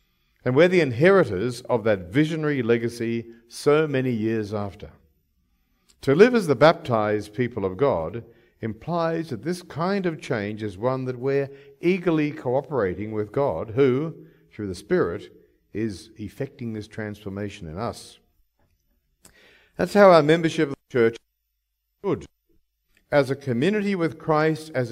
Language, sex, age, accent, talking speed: English, male, 60-79, Australian, 140 wpm